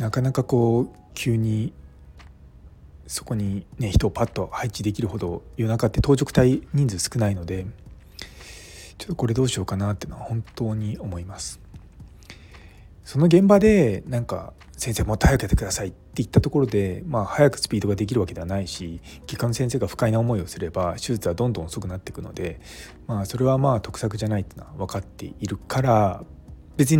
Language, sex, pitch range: Japanese, male, 90-125 Hz